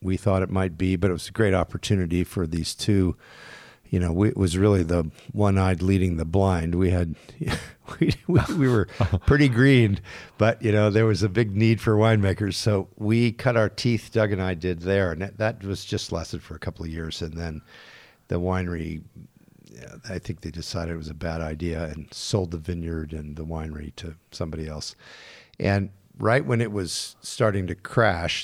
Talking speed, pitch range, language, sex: 200 wpm, 85-105 Hz, English, male